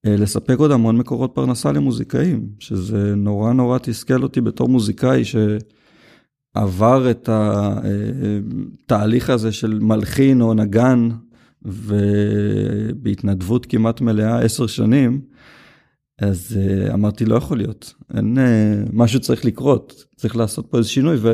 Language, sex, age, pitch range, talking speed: Hebrew, male, 30-49, 105-120 Hz, 110 wpm